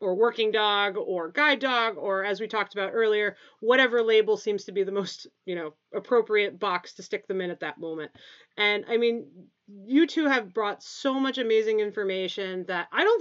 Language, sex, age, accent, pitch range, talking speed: English, female, 30-49, American, 190-245 Hz, 200 wpm